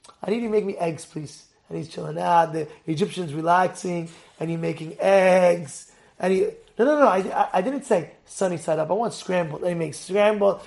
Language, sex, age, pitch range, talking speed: English, male, 30-49, 180-275 Hz, 215 wpm